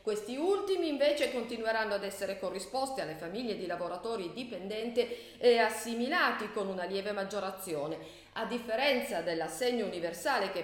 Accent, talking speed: native, 130 wpm